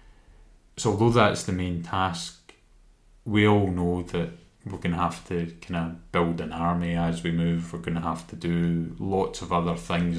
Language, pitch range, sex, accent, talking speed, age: English, 85-100 Hz, male, British, 195 wpm, 30-49